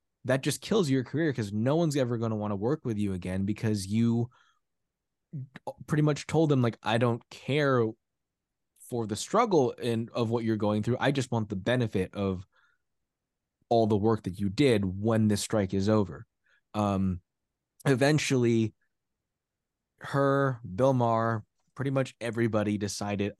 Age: 20-39